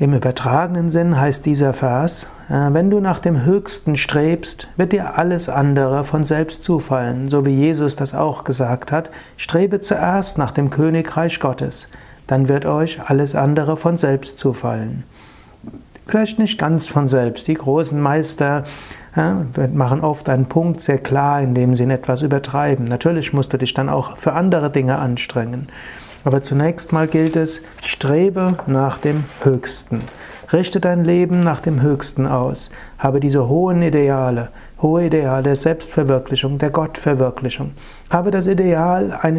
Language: German